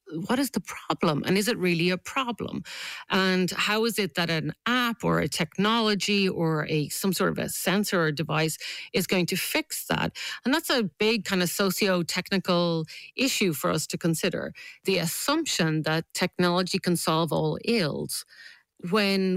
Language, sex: English, female